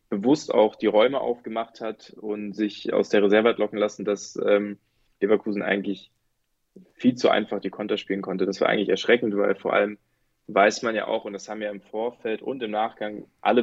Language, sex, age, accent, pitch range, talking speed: German, male, 20-39, German, 105-115 Hz, 200 wpm